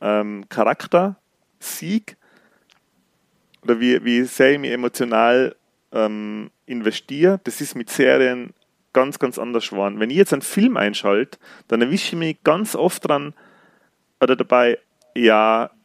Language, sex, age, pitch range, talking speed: German, male, 30-49, 110-150 Hz, 135 wpm